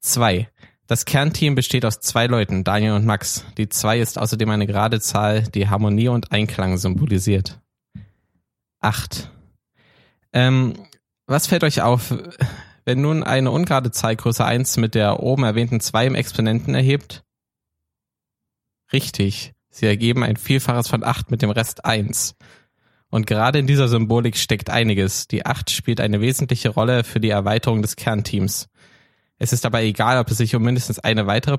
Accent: German